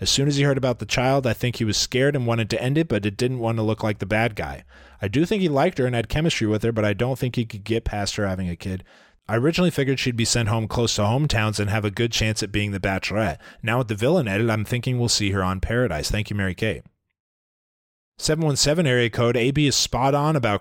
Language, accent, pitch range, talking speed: English, American, 105-130 Hz, 275 wpm